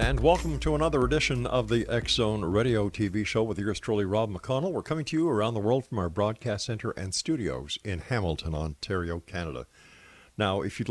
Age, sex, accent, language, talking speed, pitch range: 50-69, male, American, English, 200 wpm, 85-110 Hz